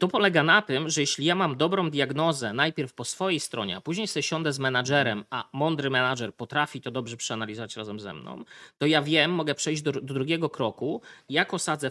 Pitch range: 120-155 Hz